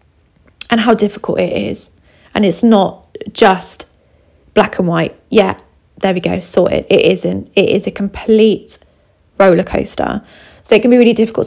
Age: 20-39